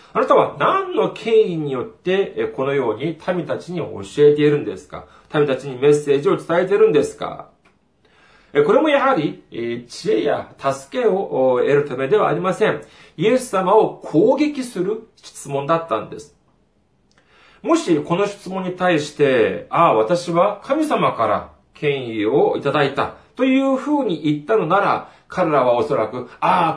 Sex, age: male, 40-59